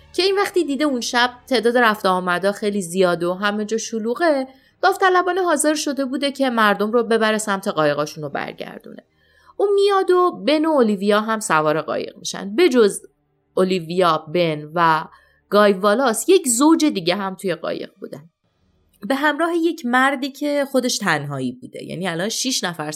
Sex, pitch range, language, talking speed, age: female, 180-265 Hz, Persian, 165 wpm, 30-49